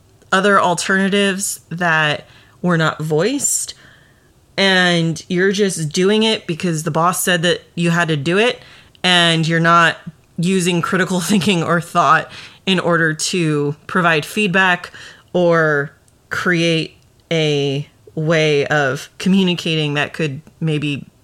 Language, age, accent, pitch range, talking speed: English, 30-49, American, 150-185 Hz, 120 wpm